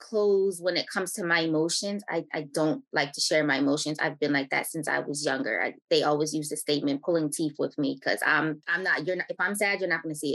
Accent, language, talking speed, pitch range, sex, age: American, English, 275 wpm, 155-190 Hz, female, 20-39